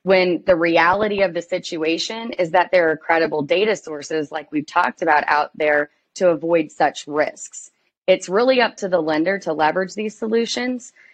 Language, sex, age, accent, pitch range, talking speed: English, female, 30-49, American, 155-185 Hz, 180 wpm